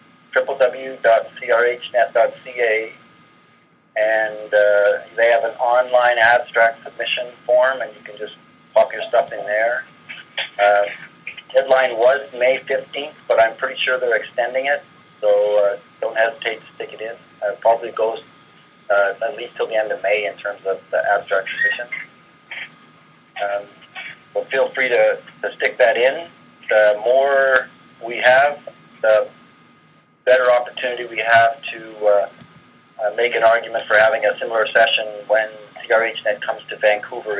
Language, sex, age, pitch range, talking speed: English, male, 40-59, 105-135 Hz, 150 wpm